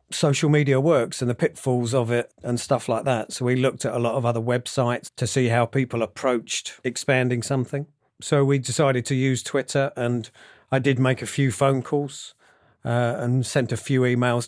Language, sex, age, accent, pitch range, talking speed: English, male, 40-59, British, 120-135 Hz, 200 wpm